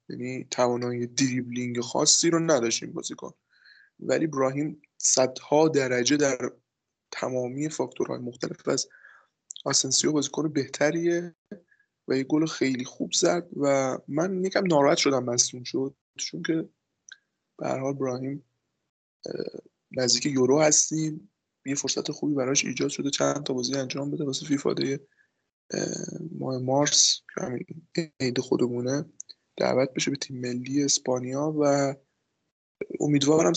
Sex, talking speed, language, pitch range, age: male, 120 wpm, Persian, 125-155 Hz, 20-39